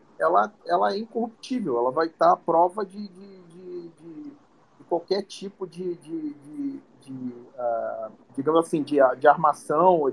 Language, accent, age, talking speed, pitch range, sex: Portuguese, Brazilian, 40-59, 155 wpm, 160-235 Hz, male